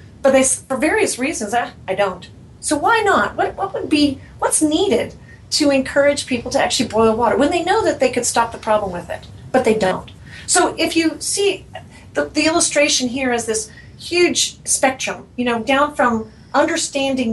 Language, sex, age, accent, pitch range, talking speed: English, female, 40-59, American, 220-290 Hz, 185 wpm